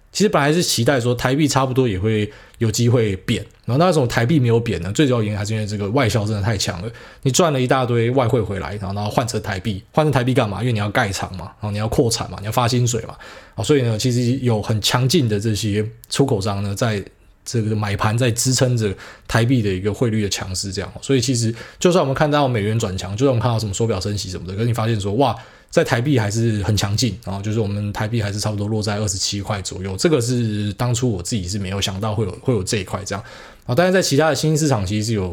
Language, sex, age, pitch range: Chinese, male, 20-39, 105-130 Hz